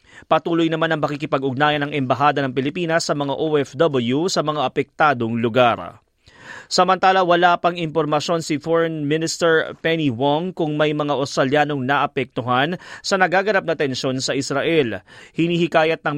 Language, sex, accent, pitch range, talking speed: Filipino, male, native, 145-170 Hz, 135 wpm